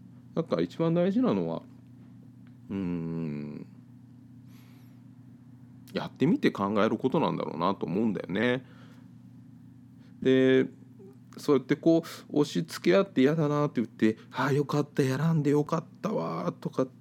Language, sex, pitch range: Japanese, male, 110-165 Hz